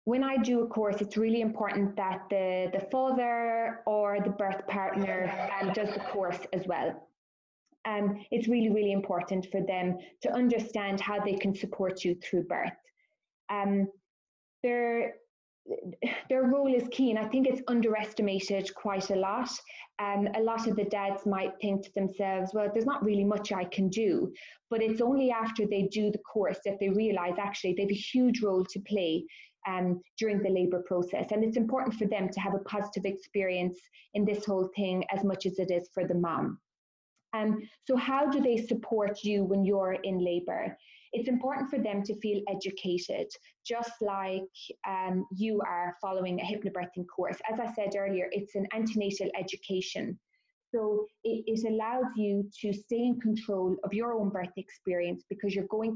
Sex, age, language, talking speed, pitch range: female, 20-39, English, 180 wpm, 190-225 Hz